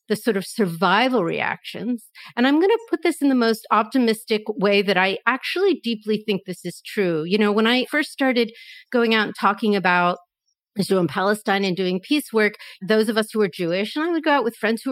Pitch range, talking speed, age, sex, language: 200-265 Hz, 225 wpm, 40-59, female, English